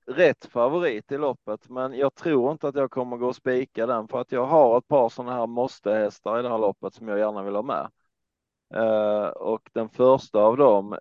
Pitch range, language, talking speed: 105-120 Hz, Swedish, 220 wpm